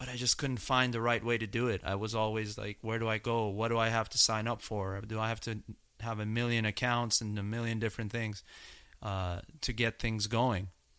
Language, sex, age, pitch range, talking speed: English, male, 30-49, 105-130 Hz, 245 wpm